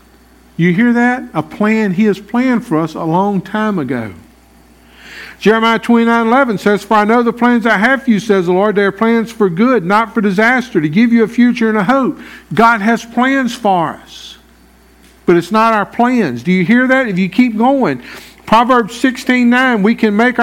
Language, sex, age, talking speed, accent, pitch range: English, male, 50-69, 205 wpm, American, 185-235 Hz